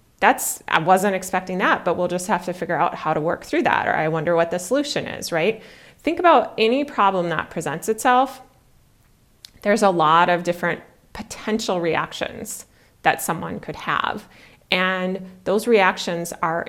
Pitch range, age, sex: 165-215 Hz, 30-49, female